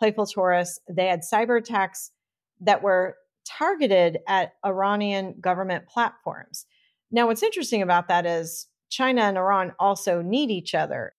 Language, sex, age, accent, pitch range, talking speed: English, female, 40-59, American, 180-215 Hz, 140 wpm